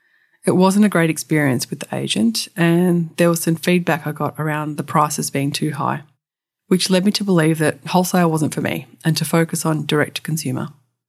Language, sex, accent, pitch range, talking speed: English, female, Australian, 155-195 Hz, 195 wpm